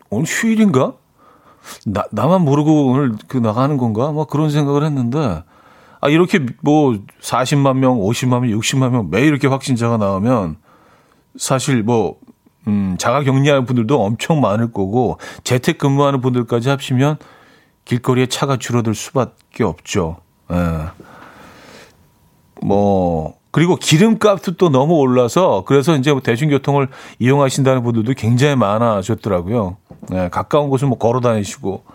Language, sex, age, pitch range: Korean, male, 40-59, 110-145 Hz